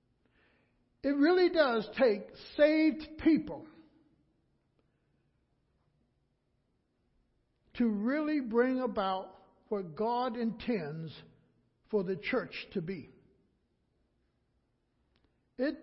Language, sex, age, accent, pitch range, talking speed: English, male, 60-79, American, 220-310 Hz, 70 wpm